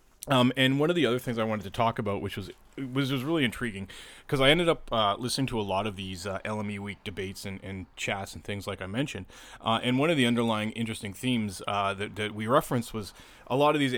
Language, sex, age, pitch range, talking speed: English, male, 30-49, 100-125 Hz, 255 wpm